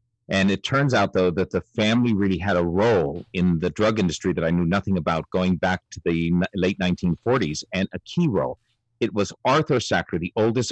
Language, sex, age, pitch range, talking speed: English, male, 50-69, 95-120 Hz, 205 wpm